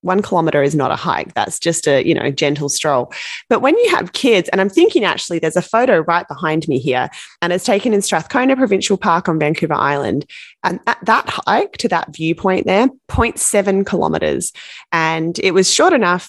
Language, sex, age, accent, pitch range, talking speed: English, female, 20-39, Australian, 160-205 Hz, 195 wpm